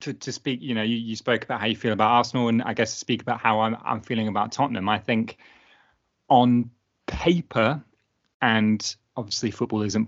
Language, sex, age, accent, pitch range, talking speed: English, male, 20-39, British, 100-115 Hz, 200 wpm